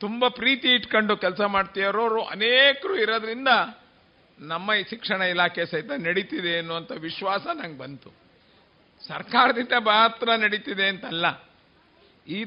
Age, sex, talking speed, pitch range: 50-69, male, 105 wpm, 205-235 Hz